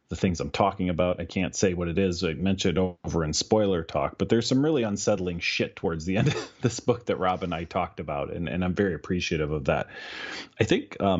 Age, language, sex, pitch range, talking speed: 30-49, English, male, 85-105 Hz, 240 wpm